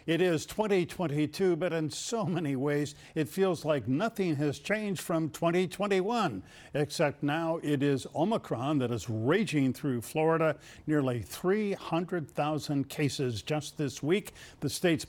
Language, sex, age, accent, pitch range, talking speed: English, male, 50-69, American, 135-175 Hz, 135 wpm